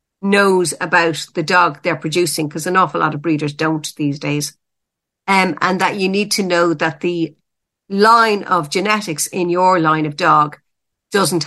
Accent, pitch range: Irish, 160-190 Hz